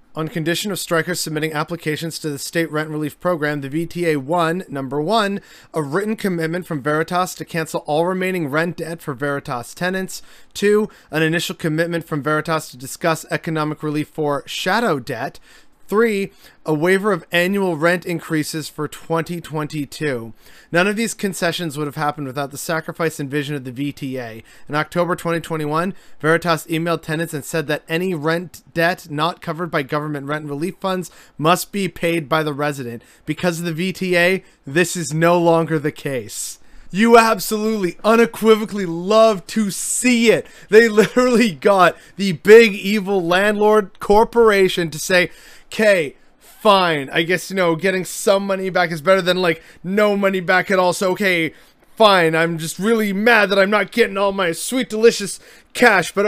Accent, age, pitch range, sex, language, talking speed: American, 30-49, 155-200 Hz, male, English, 165 wpm